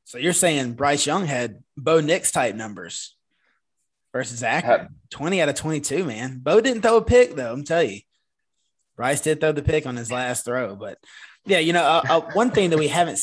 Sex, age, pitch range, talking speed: male, 20-39, 140-170 Hz, 210 wpm